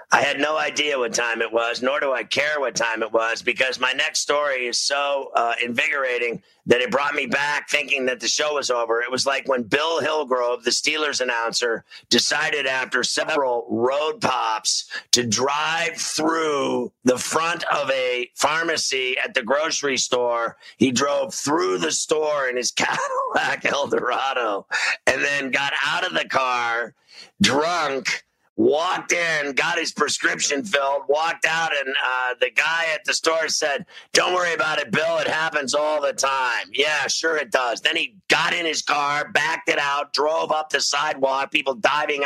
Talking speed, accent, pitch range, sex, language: 175 wpm, American, 130-160 Hz, male, English